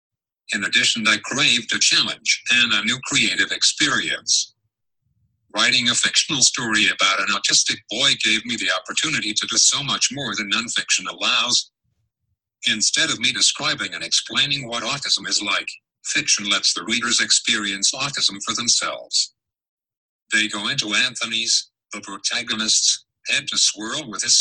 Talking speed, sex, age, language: 145 wpm, male, 50-69, English